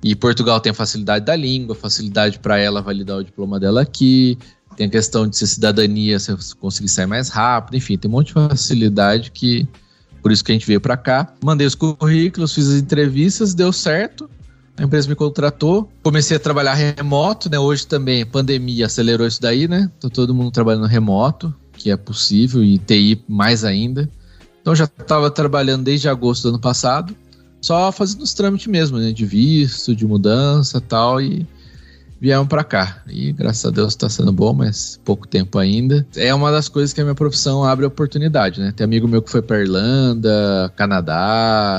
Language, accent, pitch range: Portuguese, Brazilian, 100-145 Hz